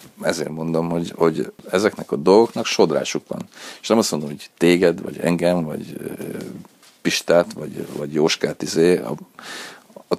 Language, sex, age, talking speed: Hungarian, male, 40-59, 155 wpm